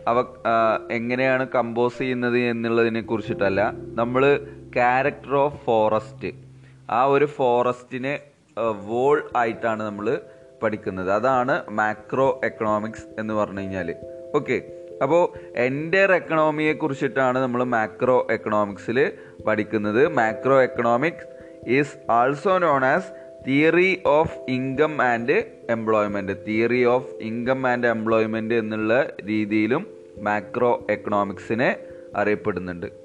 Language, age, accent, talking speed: Malayalam, 30-49, native, 95 wpm